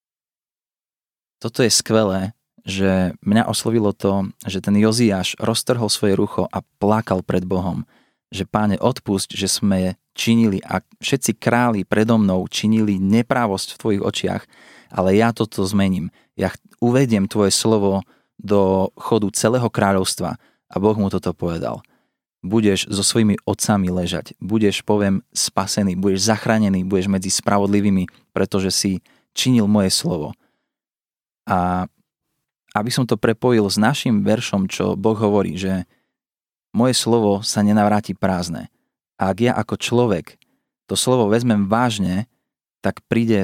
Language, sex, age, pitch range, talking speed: Slovak, male, 20-39, 95-115 Hz, 135 wpm